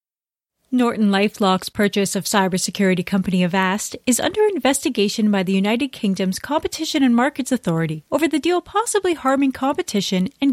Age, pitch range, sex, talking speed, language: 30-49, 195-260 Hz, female, 140 wpm, English